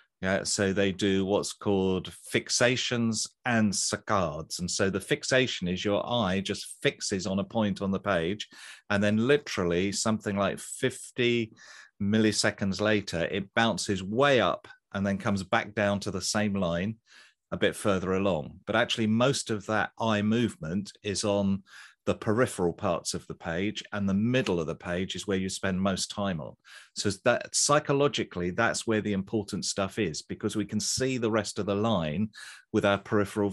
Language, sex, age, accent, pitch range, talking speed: English, male, 40-59, British, 95-115 Hz, 175 wpm